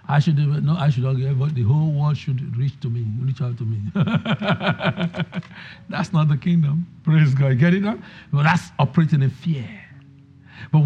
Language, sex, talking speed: English, male, 180 wpm